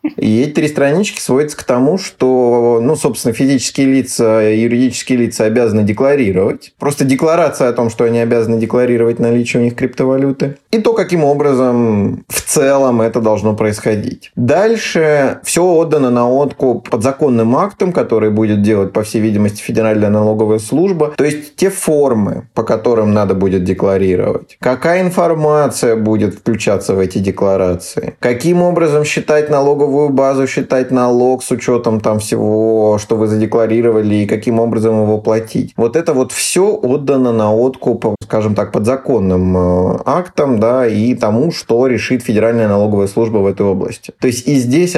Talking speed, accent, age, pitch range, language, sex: 155 wpm, native, 20-39, 110-135 Hz, Russian, male